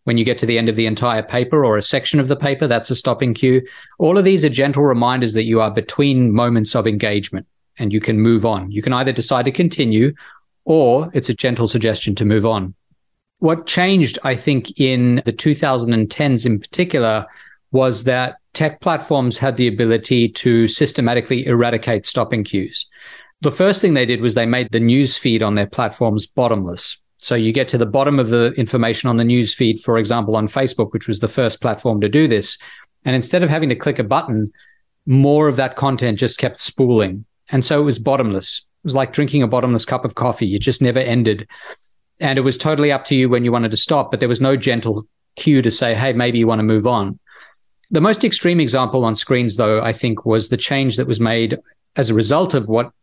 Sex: male